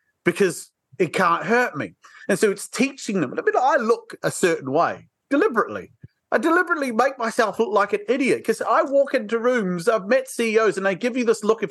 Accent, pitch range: British, 175-245 Hz